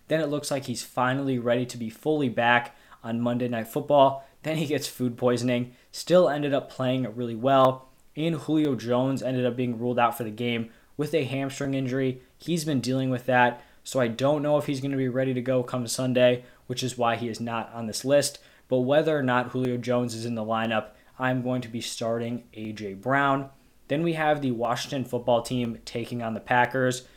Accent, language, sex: American, English, male